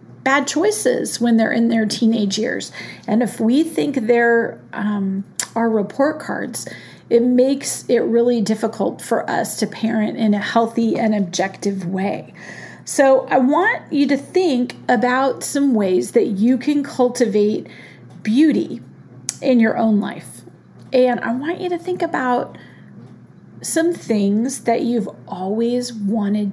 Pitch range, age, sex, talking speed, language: 215-260 Hz, 40-59, female, 140 wpm, English